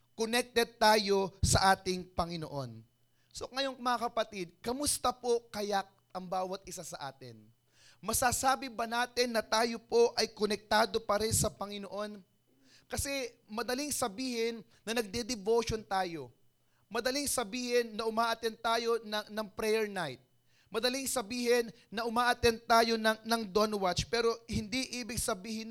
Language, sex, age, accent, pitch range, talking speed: English, male, 20-39, Filipino, 190-240 Hz, 130 wpm